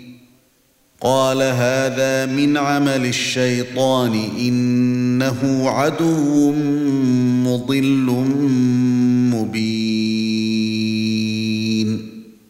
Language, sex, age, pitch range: Arabic, male, 40-59, 135-165 Hz